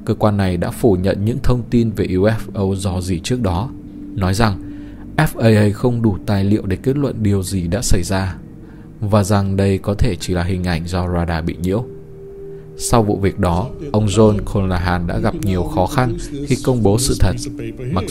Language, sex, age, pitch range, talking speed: Vietnamese, male, 20-39, 90-115 Hz, 200 wpm